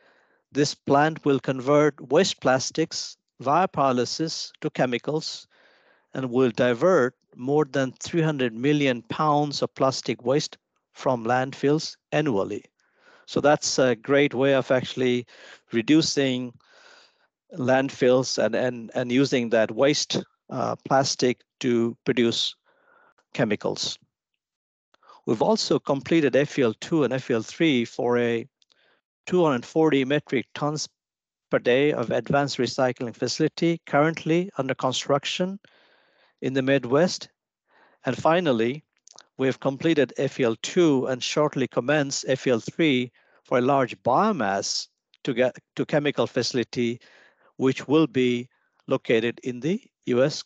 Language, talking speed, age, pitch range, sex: English, 115 wpm, 50-69, 125-155 Hz, male